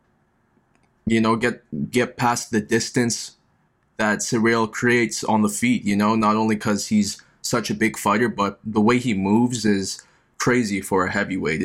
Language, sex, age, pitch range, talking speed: English, male, 20-39, 100-115 Hz, 170 wpm